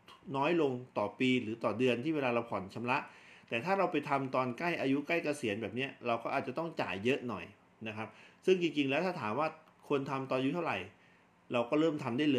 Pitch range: 120-145 Hz